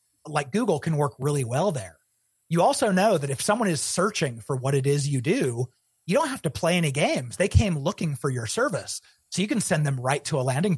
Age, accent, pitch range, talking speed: 30-49, American, 125-160 Hz, 240 wpm